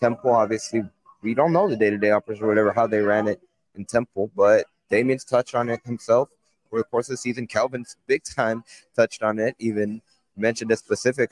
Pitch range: 110-125 Hz